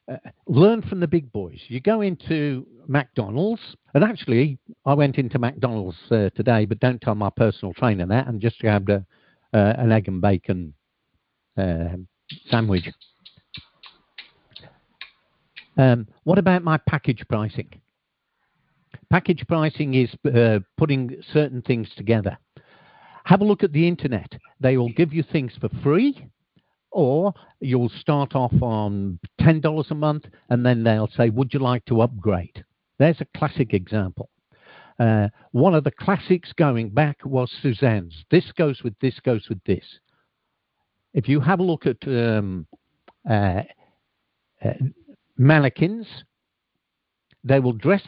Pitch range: 110-150 Hz